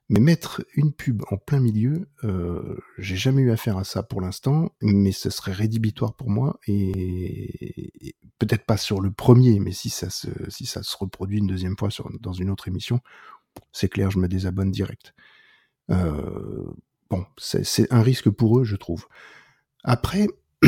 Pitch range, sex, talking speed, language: 100-130 Hz, male, 185 wpm, French